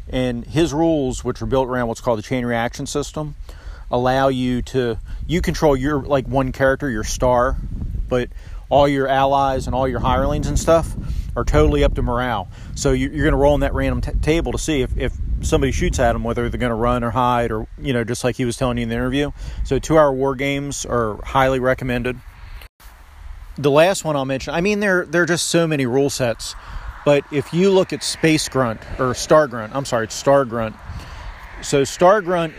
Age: 40-59